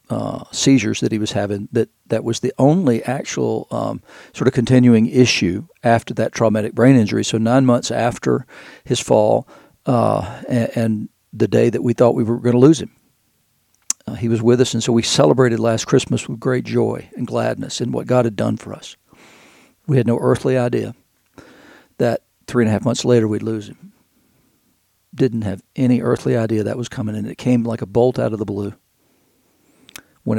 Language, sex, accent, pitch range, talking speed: English, male, American, 110-125 Hz, 195 wpm